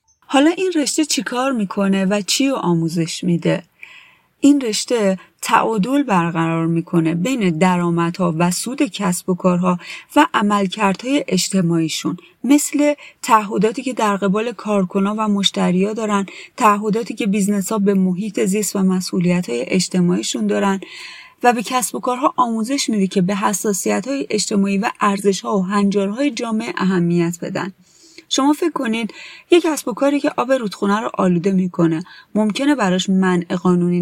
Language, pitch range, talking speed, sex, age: Persian, 180-235 Hz, 150 wpm, female, 30-49